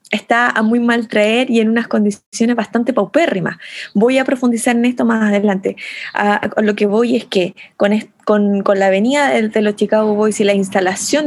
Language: Spanish